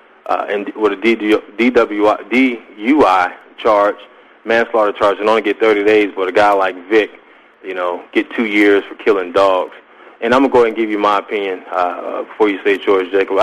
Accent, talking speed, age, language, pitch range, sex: American, 190 wpm, 20-39, English, 105-120 Hz, male